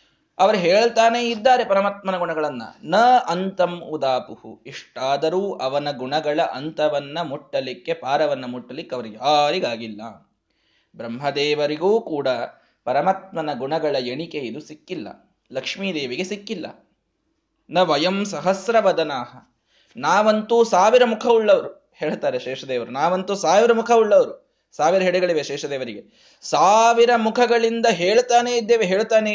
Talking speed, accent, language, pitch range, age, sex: 95 wpm, native, Kannada, 150-220 Hz, 20-39, male